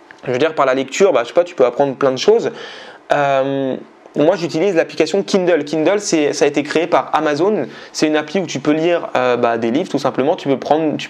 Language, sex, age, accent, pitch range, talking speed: French, male, 20-39, French, 140-175 Hz, 250 wpm